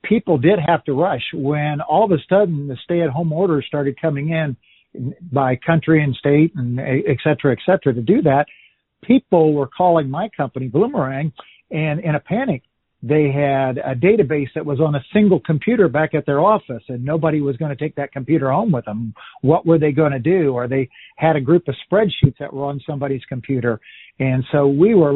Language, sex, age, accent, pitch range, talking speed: English, male, 50-69, American, 135-165 Hz, 205 wpm